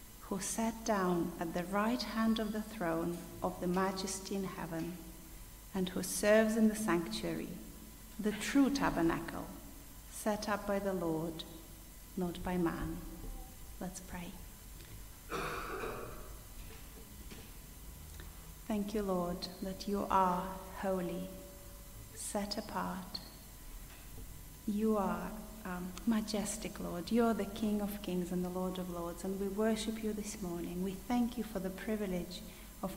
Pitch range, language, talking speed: 180-215 Hz, English, 130 wpm